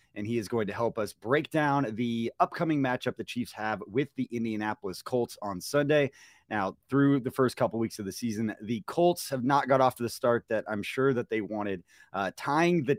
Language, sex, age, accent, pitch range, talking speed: English, male, 30-49, American, 105-130 Hz, 220 wpm